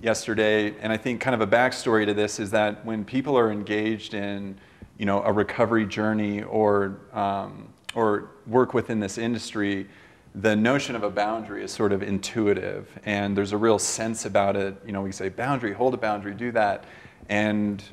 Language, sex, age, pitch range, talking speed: English, male, 40-59, 100-115 Hz, 185 wpm